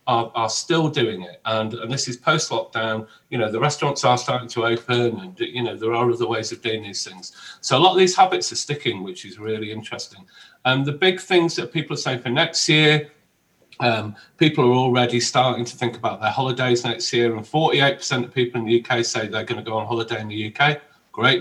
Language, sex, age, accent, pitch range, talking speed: English, male, 40-59, British, 115-135 Hz, 230 wpm